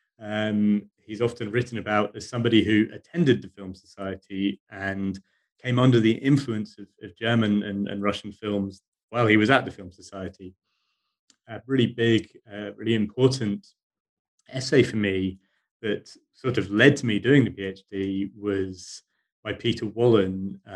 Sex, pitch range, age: male, 100-115 Hz, 30-49